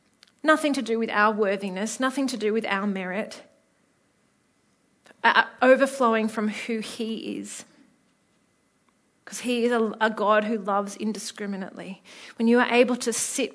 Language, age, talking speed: English, 30-49, 135 wpm